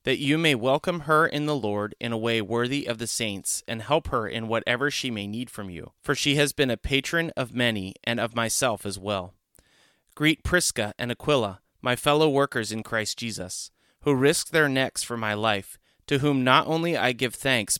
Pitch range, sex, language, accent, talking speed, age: 110-145 Hz, male, English, American, 210 wpm, 30-49